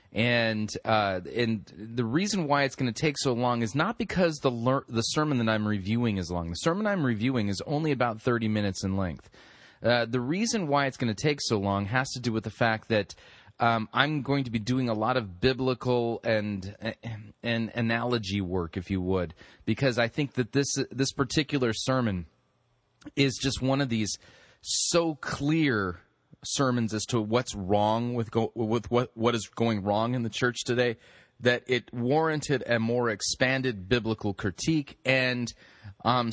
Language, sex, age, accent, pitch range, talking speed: English, male, 30-49, American, 105-130 Hz, 190 wpm